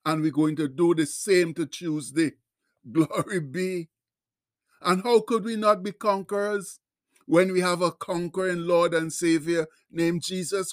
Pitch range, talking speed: 165-200 Hz, 160 wpm